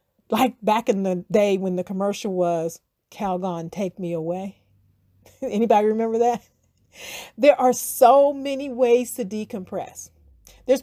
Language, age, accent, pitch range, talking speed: English, 50-69, American, 180-250 Hz, 135 wpm